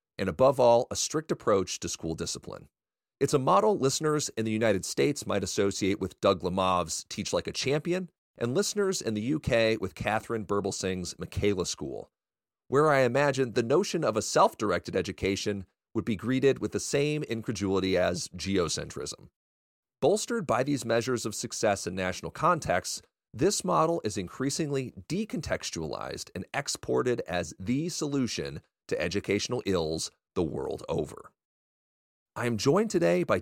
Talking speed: 150 wpm